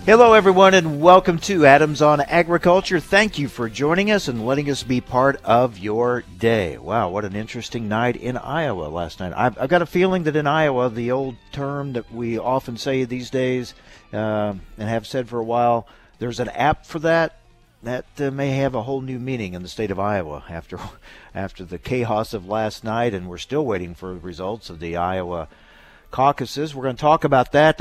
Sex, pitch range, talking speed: male, 105-140 Hz, 205 wpm